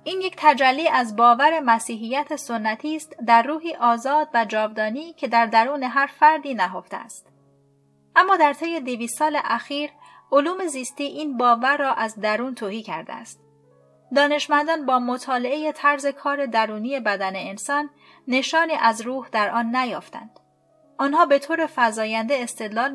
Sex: female